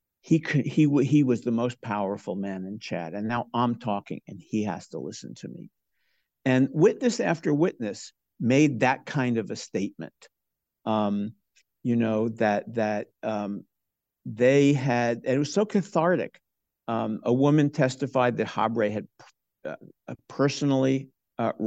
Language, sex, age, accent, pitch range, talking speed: English, male, 50-69, American, 110-150 Hz, 150 wpm